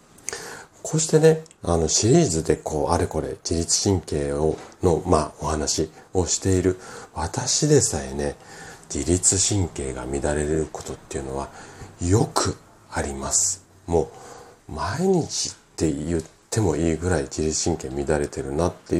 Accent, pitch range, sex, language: native, 75-95 Hz, male, Japanese